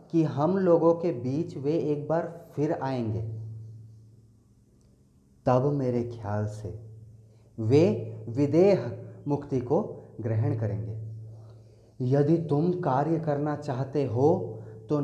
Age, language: 30-49, Hindi